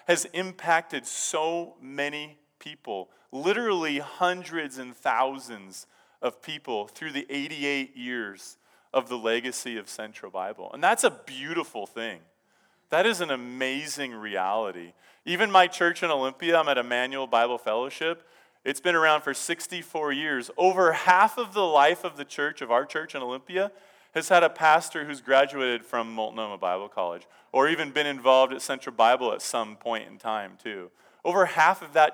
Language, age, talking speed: English, 30-49, 160 wpm